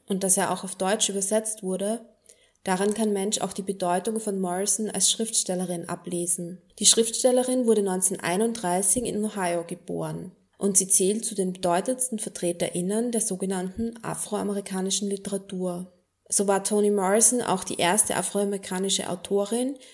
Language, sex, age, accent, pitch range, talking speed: German, female, 20-39, German, 180-210 Hz, 140 wpm